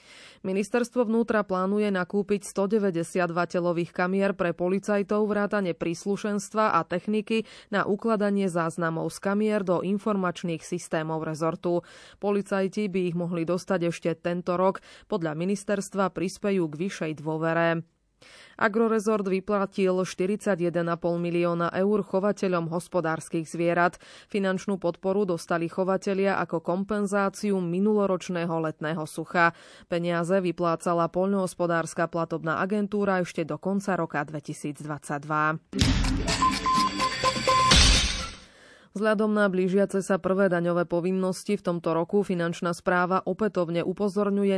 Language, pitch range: Slovak, 170-205 Hz